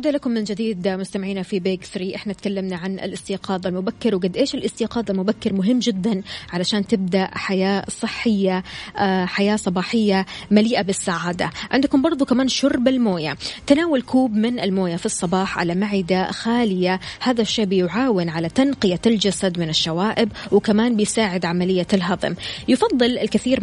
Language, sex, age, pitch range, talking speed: Arabic, female, 20-39, 185-230 Hz, 135 wpm